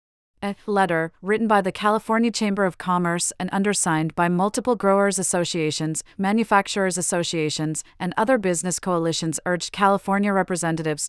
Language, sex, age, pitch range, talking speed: English, female, 30-49, 170-200 Hz, 130 wpm